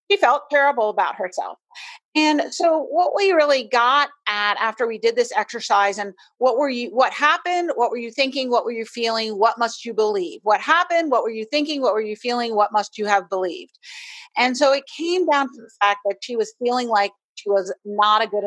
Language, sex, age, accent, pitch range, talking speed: English, female, 40-59, American, 210-290 Hz, 220 wpm